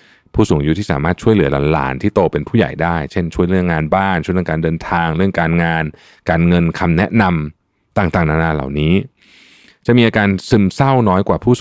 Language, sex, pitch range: Thai, male, 80-110 Hz